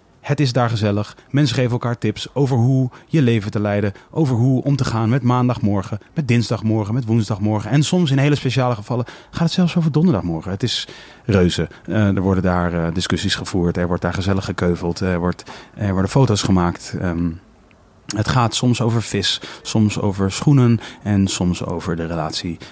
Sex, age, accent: male, 30-49, Dutch